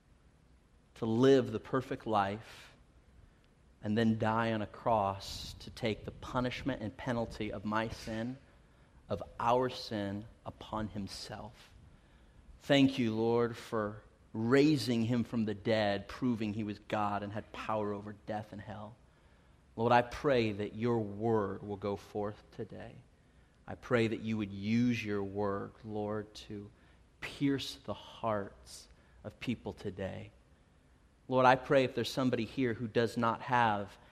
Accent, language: American, English